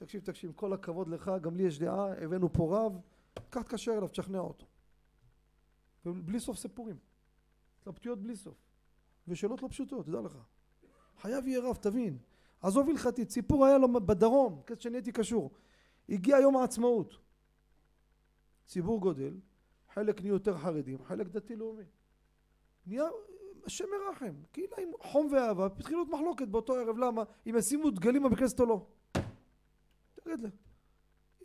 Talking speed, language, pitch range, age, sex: 135 wpm, Hebrew, 185-250 Hz, 40-59, male